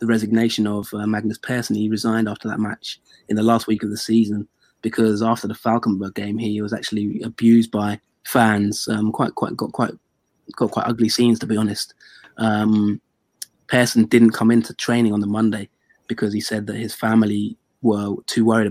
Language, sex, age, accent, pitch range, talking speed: English, male, 20-39, British, 105-115 Hz, 190 wpm